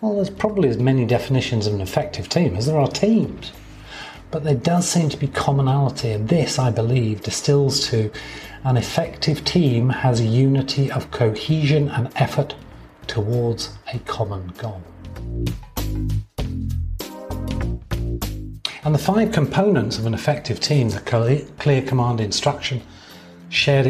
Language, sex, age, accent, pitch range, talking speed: English, male, 40-59, British, 110-145 Hz, 135 wpm